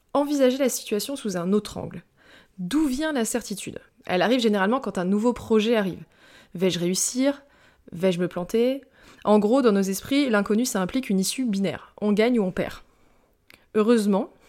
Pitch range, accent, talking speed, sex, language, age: 190-245 Hz, French, 170 wpm, female, French, 20-39